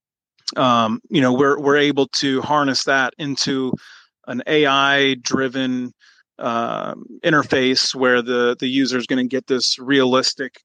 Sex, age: male, 30-49